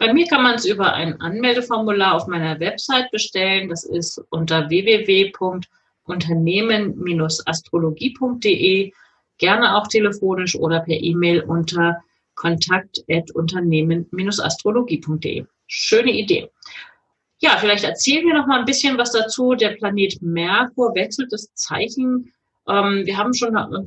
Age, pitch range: 40-59, 175-225 Hz